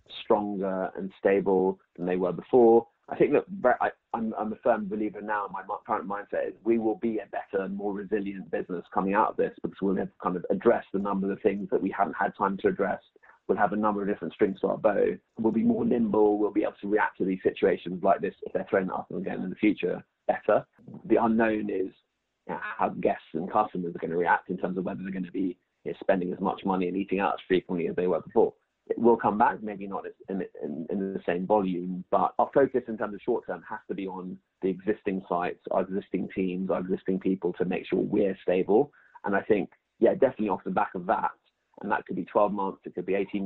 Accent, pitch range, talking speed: British, 95-110 Hz, 235 wpm